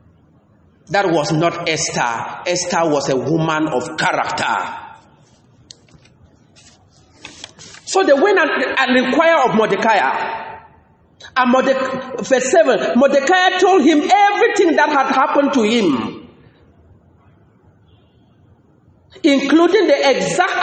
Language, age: English, 40-59